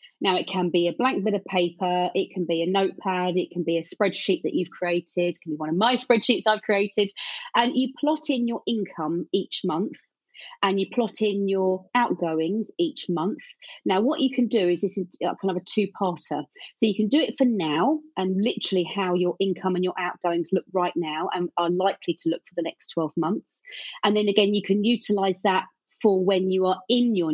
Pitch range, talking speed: 175-210 Hz, 220 wpm